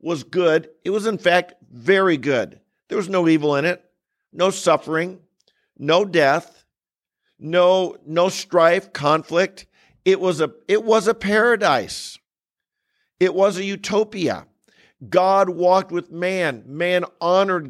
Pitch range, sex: 135-180 Hz, male